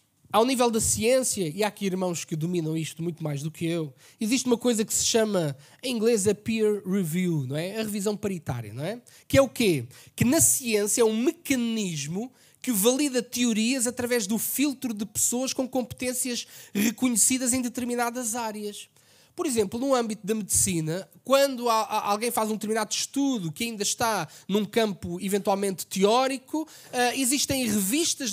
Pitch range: 215-290 Hz